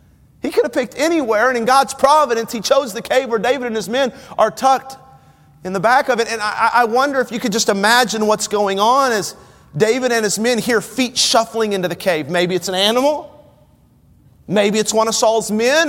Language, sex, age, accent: English, male, 40-59, American